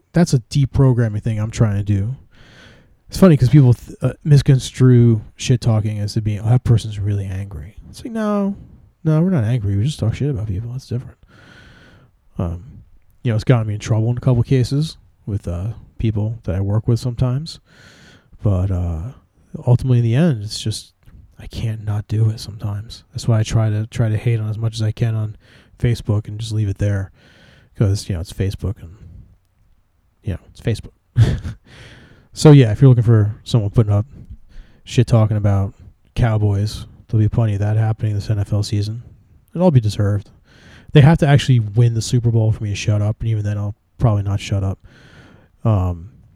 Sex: male